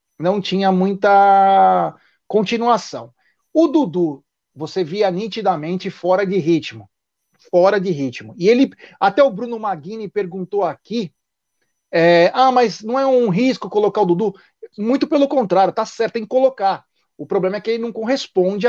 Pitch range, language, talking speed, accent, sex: 180-240 Hz, Portuguese, 150 wpm, Brazilian, male